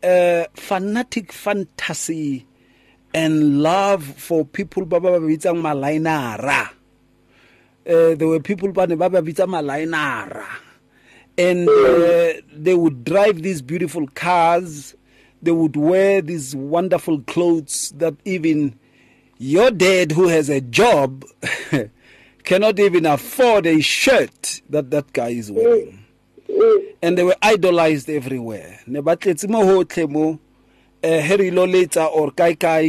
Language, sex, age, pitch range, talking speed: English, male, 40-59, 140-190 Hz, 95 wpm